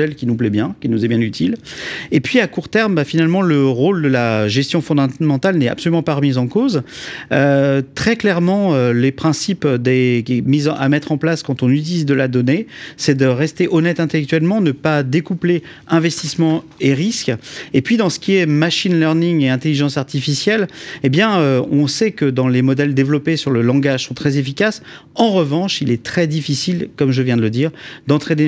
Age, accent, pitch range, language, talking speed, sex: 40-59, French, 135-170 Hz, French, 205 wpm, male